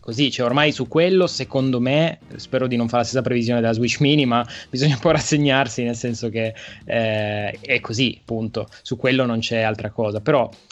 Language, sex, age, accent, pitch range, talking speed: Italian, male, 20-39, native, 115-135 Hz, 200 wpm